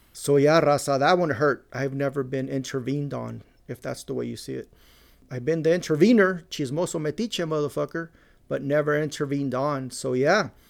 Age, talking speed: 30-49, 175 wpm